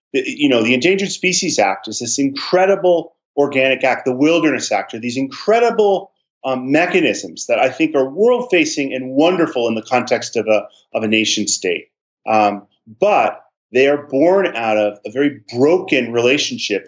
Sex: male